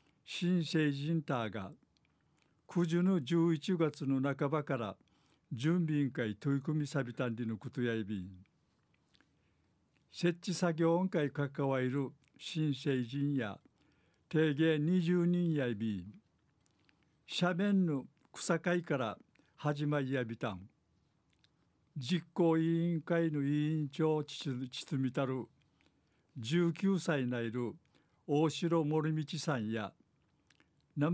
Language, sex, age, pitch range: Japanese, male, 60-79, 130-165 Hz